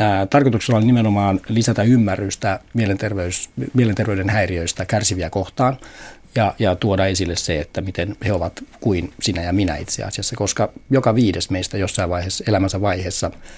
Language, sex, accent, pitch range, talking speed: Finnish, male, native, 90-115 Hz, 140 wpm